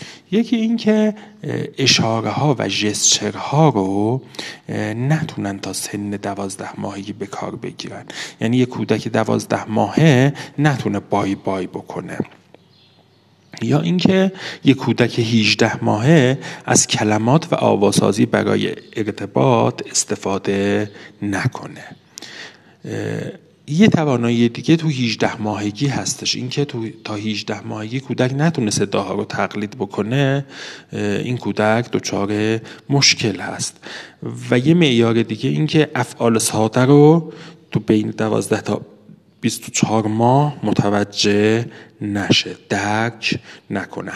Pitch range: 105-150 Hz